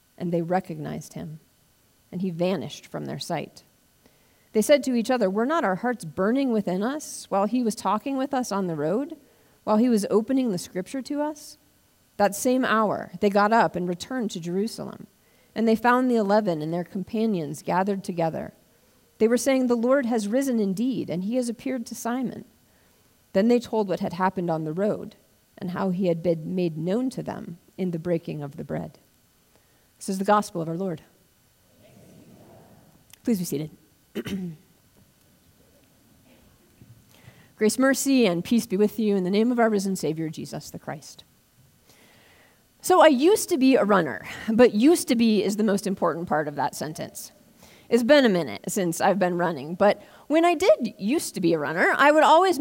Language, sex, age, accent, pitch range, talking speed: English, female, 40-59, American, 185-245 Hz, 185 wpm